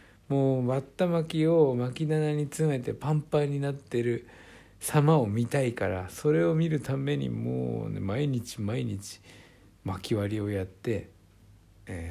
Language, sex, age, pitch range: Japanese, male, 60-79, 100-130 Hz